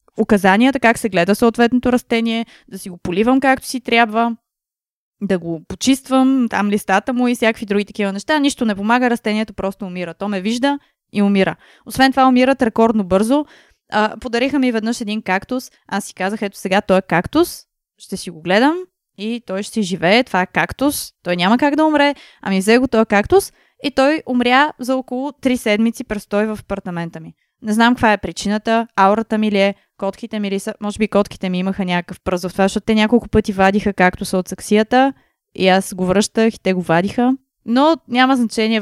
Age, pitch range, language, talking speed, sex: 20-39, 195-245 Hz, Bulgarian, 195 wpm, female